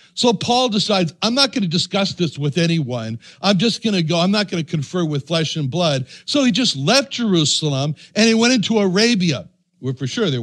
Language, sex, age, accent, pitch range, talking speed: English, male, 60-79, American, 155-205 Hz, 205 wpm